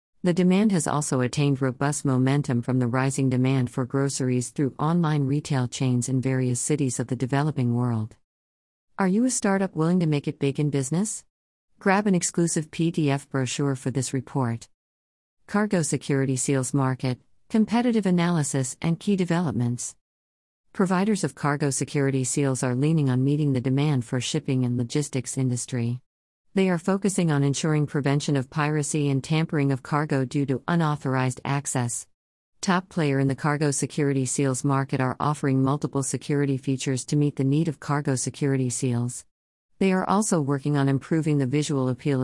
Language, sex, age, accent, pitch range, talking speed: English, female, 50-69, American, 130-150 Hz, 160 wpm